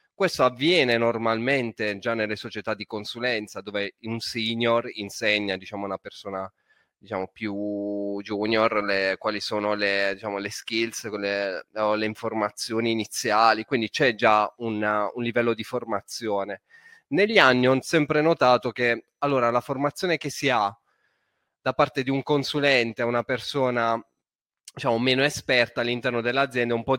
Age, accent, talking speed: 20-39, Italian, 145 wpm